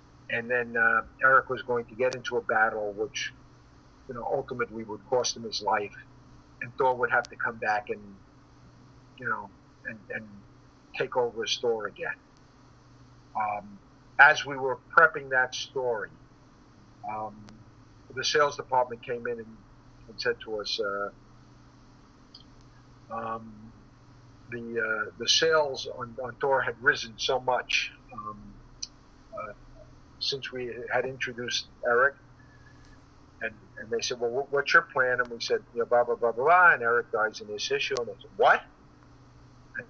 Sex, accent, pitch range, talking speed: male, American, 115-170 Hz, 155 wpm